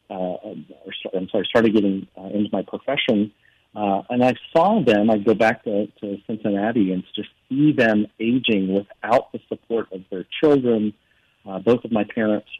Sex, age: male, 40-59